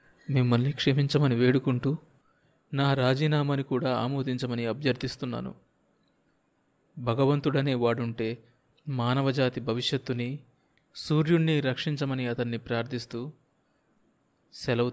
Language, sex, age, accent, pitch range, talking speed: Telugu, male, 30-49, native, 120-145 Hz, 70 wpm